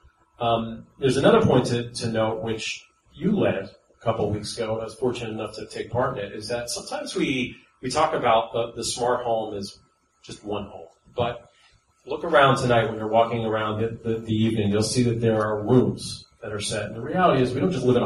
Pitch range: 105-125 Hz